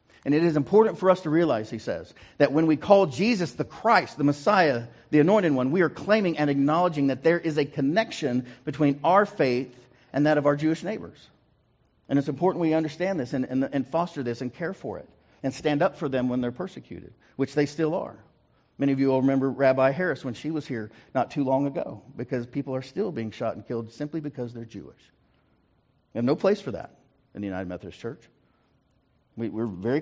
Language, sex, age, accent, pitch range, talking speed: English, male, 50-69, American, 135-205 Hz, 215 wpm